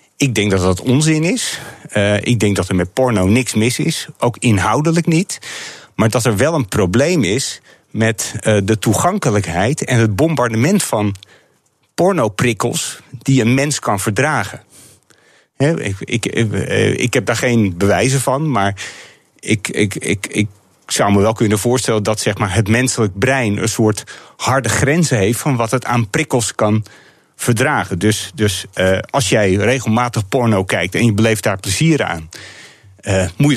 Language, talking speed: Dutch, 170 wpm